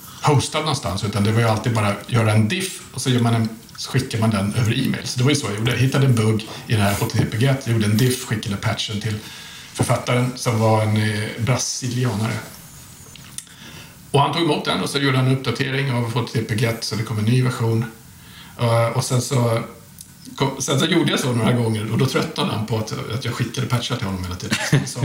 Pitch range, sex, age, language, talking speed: 110-130 Hz, male, 50-69, Swedish, 220 wpm